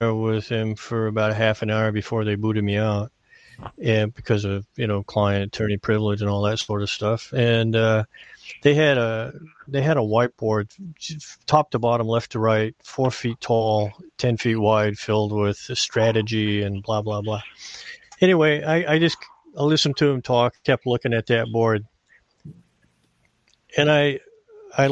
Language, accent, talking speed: English, American, 175 wpm